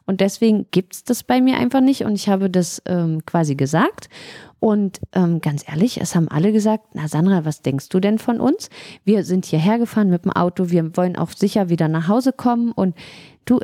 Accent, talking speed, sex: German, 215 wpm, female